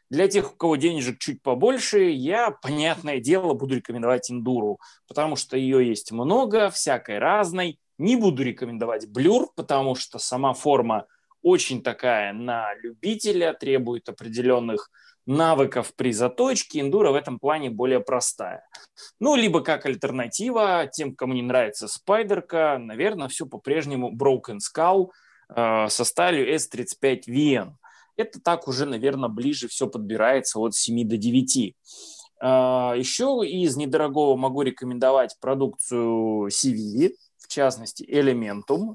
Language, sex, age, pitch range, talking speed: Russian, male, 20-39, 125-170 Hz, 125 wpm